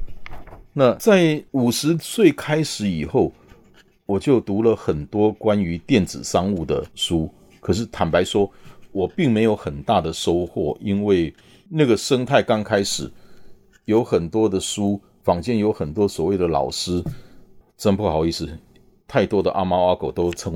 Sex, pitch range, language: male, 90-135 Hz, Chinese